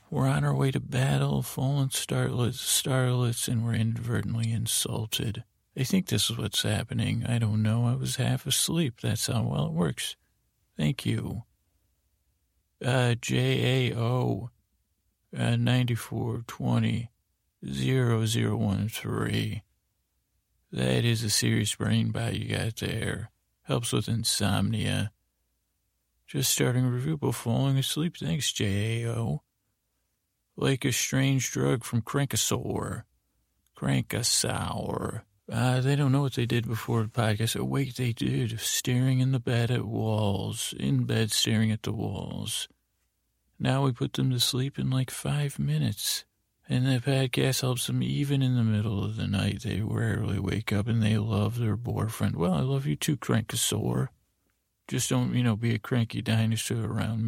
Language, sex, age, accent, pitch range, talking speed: English, male, 40-59, American, 105-125 Hz, 145 wpm